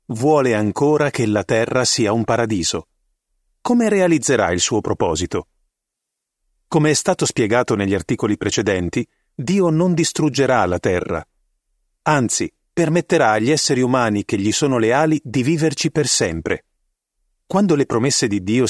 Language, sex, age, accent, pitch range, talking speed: Italian, male, 40-59, native, 115-155 Hz, 140 wpm